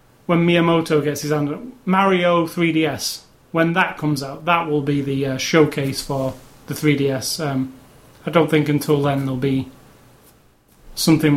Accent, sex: British, male